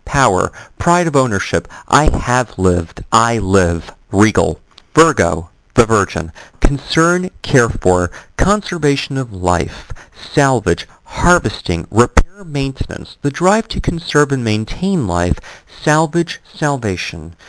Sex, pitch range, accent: male, 95-145 Hz, American